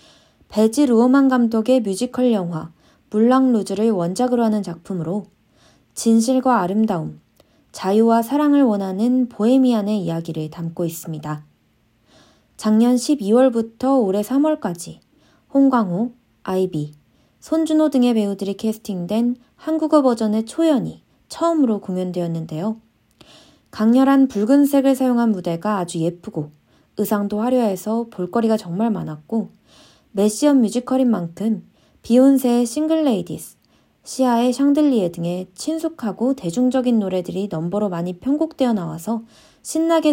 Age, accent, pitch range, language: 20-39, native, 185-260 Hz, Korean